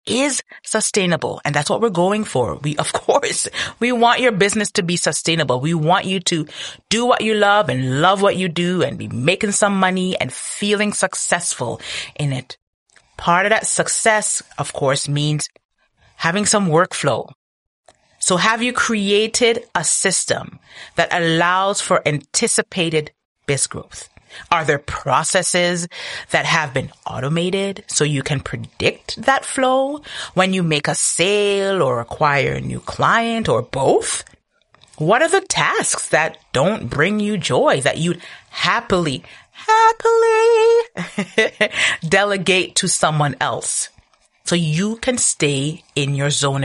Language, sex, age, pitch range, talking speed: English, female, 30-49, 150-215 Hz, 145 wpm